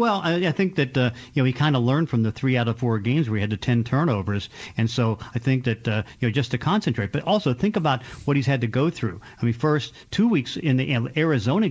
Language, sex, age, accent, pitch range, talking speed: English, male, 50-69, American, 115-140 Hz, 275 wpm